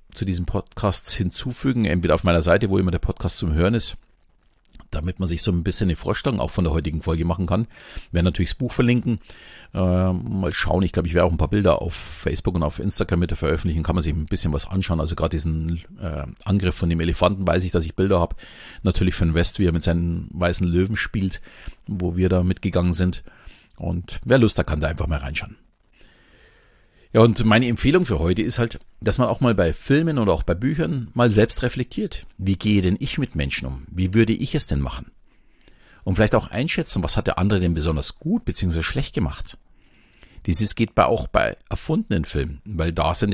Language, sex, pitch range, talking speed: German, male, 85-105 Hz, 215 wpm